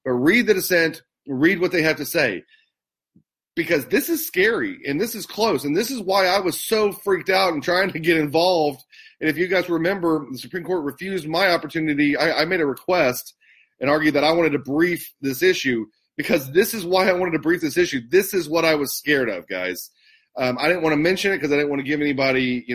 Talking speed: 235 wpm